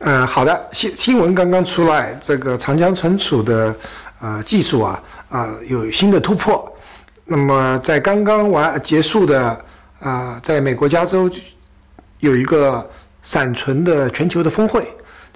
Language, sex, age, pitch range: Chinese, male, 60-79, 125-185 Hz